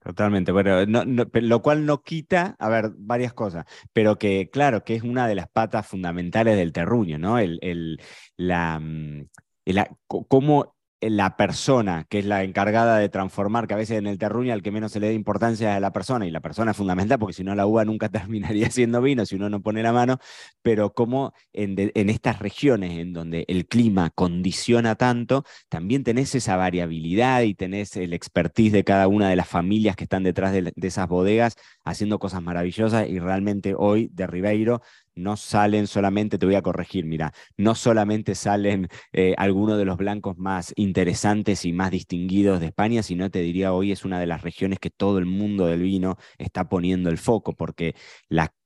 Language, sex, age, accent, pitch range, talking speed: Spanish, male, 20-39, Argentinian, 90-110 Hz, 195 wpm